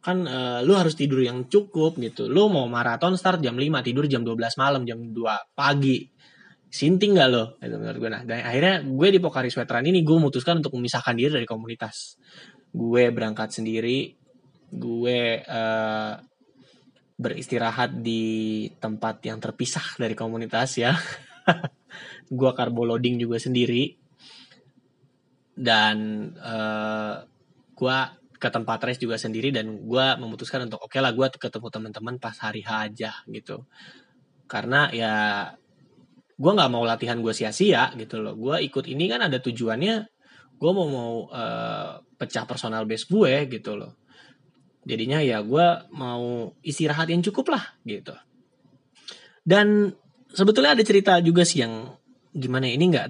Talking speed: 140 wpm